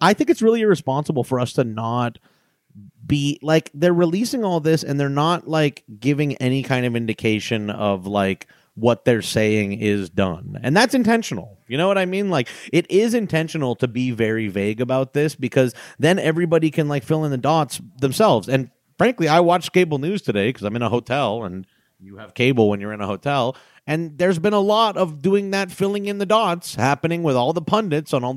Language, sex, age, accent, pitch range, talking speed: English, male, 30-49, American, 115-175 Hz, 210 wpm